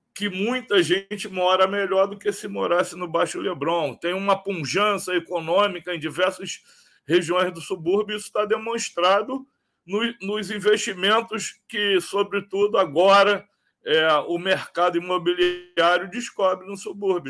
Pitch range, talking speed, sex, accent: 175-210 Hz, 130 wpm, male, Brazilian